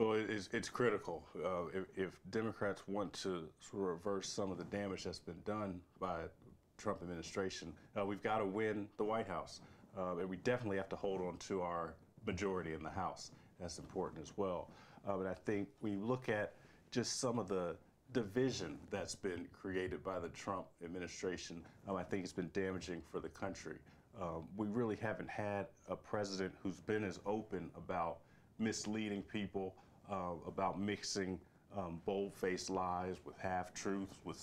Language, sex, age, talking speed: English, male, 40-59, 170 wpm